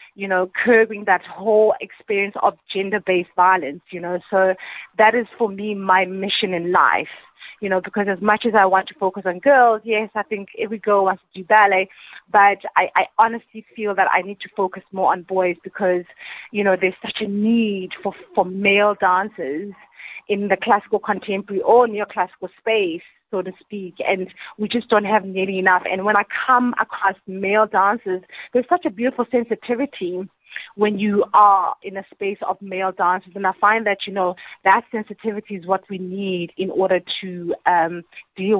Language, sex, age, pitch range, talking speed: English, female, 30-49, 185-215 Hz, 185 wpm